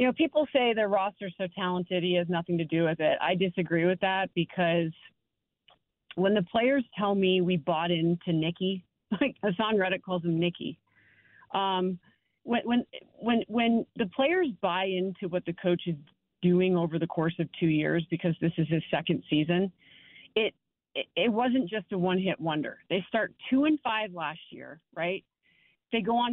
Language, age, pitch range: English, 40-59, 170-220 Hz